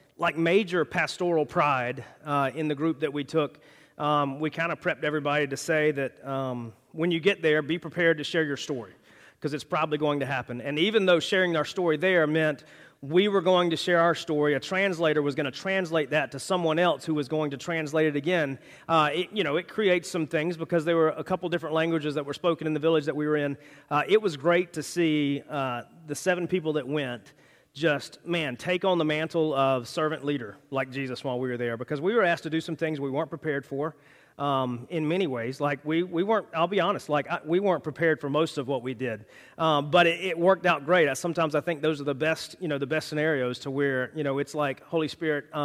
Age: 30-49